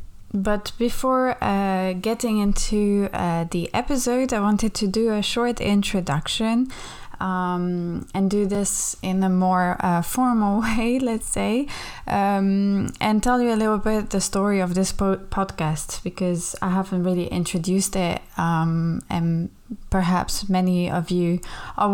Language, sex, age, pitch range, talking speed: English, female, 20-39, 180-210 Hz, 140 wpm